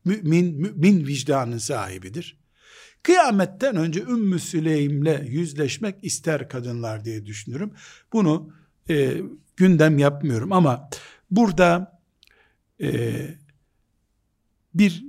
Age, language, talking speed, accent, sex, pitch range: 60-79, Turkish, 90 wpm, native, male, 130-195 Hz